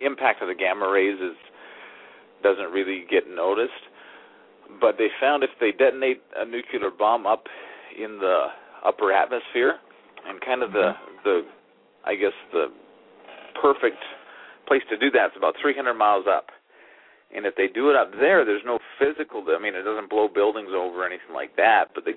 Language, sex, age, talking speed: English, male, 40-59, 175 wpm